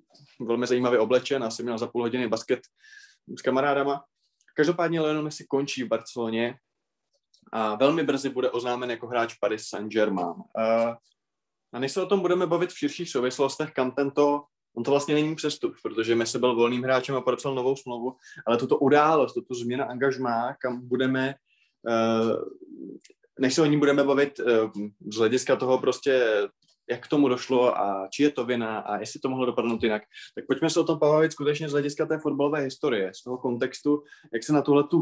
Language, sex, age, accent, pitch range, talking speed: Czech, male, 20-39, native, 120-150 Hz, 180 wpm